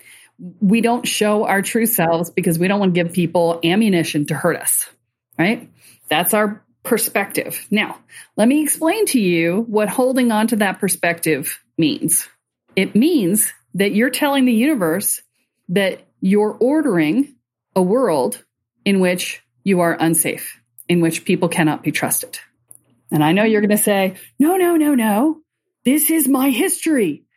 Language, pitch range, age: English, 175-235 Hz, 40-59